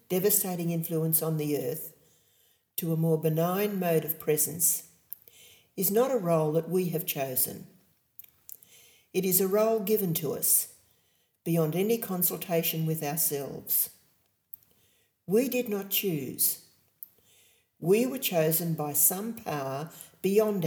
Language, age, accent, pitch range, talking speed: English, 50-69, Australian, 160-200 Hz, 125 wpm